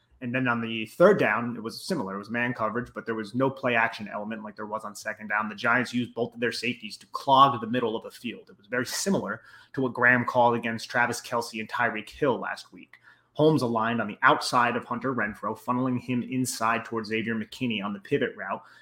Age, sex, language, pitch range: 30-49, male, English, 115-130 Hz